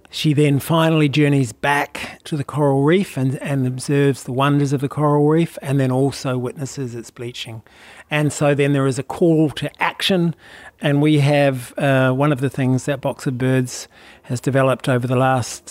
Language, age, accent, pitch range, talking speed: English, 40-59, Australian, 130-145 Hz, 190 wpm